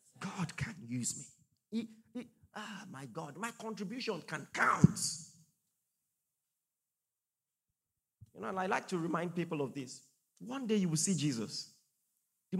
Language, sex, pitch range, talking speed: English, male, 140-190 Hz, 130 wpm